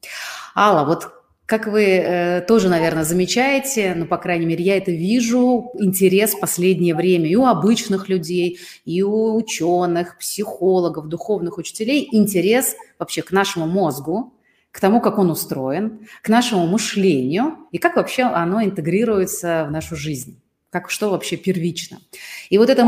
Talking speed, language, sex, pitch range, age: 150 wpm, Russian, female, 165-210 Hz, 30-49